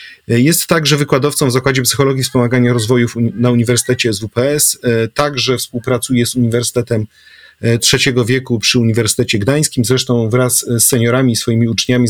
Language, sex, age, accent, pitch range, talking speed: Polish, male, 40-59, native, 115-135 Hz, 140 wpm